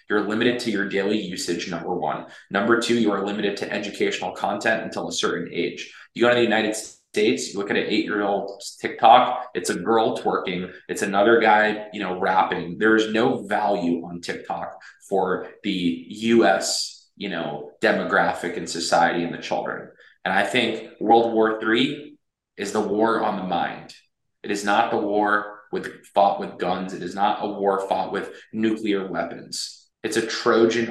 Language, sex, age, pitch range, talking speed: English, male, 20-39, 95-110 Hz, 180 wpm